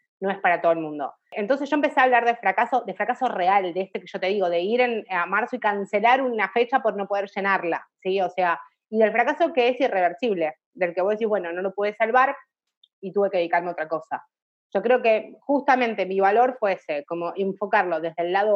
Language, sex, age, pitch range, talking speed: Spanish, female, 30-49, 190-245 Hz, 235 wpm